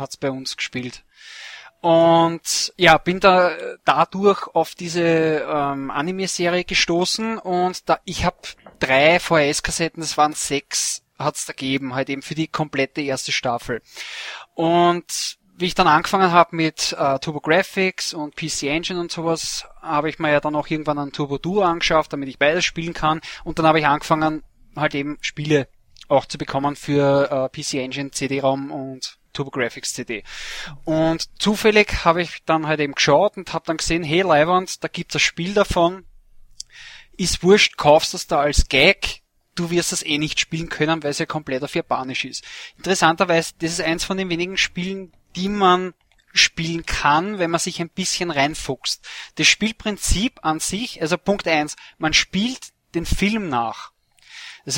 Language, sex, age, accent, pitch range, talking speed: German, male, 20-39, German, 150-185 Hz, 170 wpm